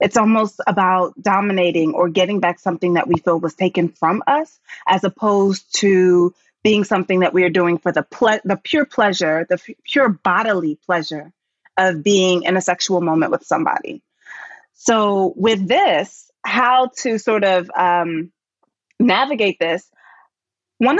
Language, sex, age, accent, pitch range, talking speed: English, female, 30-49, American, 175-220 Hz, 155 wpm